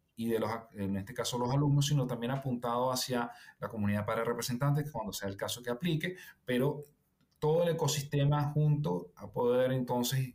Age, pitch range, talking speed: 30-49, 115-145 Hz, 175 wpm